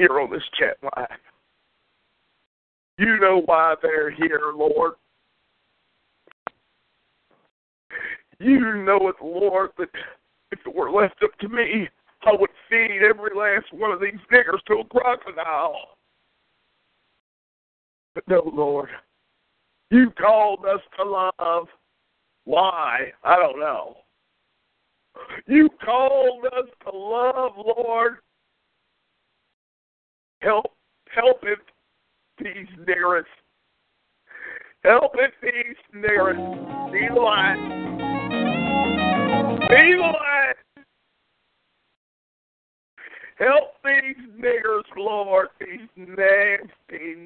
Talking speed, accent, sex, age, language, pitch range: 90 wpm, American, male, 50-69, English, 185-260 Hz